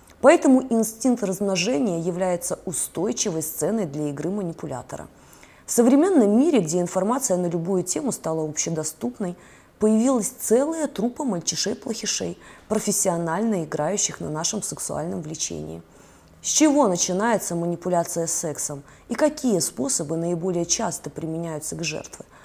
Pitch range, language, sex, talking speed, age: 165-230 Hz, Russian, female, 115 wpm, 20-39